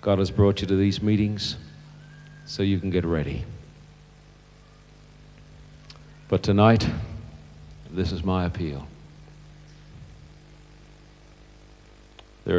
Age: 50-69